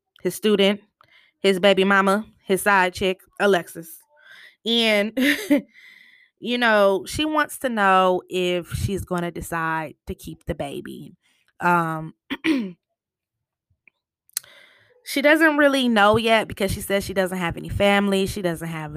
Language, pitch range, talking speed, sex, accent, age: English, 185-280 Hz, 135 wpm, female, American, 20-39